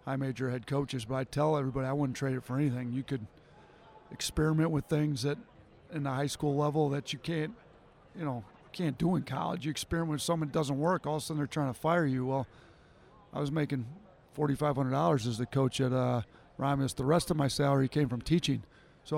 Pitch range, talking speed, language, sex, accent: 140-165 Hz, 225 wpm, English, male, American